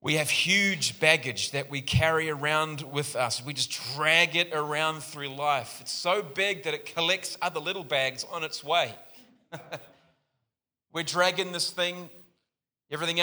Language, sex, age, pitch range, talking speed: English, male, 30-49, 130-165 Hz, 155 wpm